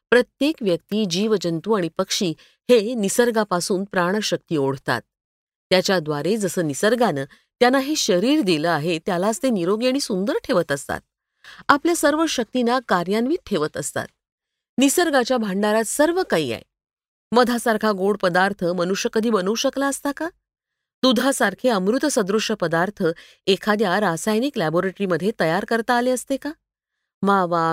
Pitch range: 185-260 Hz